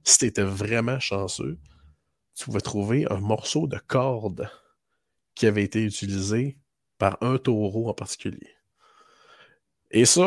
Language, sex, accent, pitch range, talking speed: French, male, Canadian, 100-125 Hz, 135 wpm